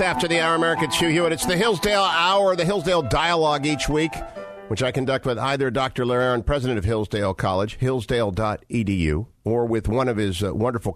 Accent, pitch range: American, 90-125 Hz